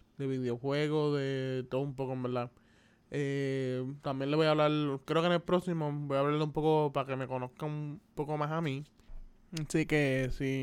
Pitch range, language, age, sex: 135-150 Hz, Spanish, 20-39, male